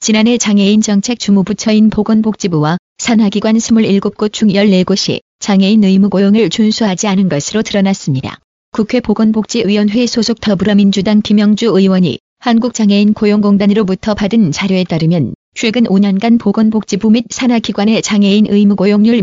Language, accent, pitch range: Korean, native, 200-220 Hz